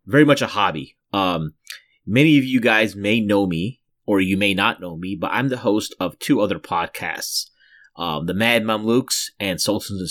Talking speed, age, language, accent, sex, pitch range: 195 wpm, 30-49, English, American, male, 95-115 Hz